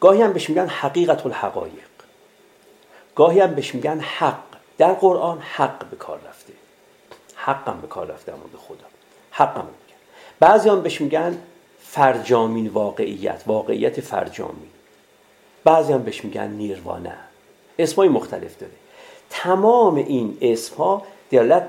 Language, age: Persian, 50-69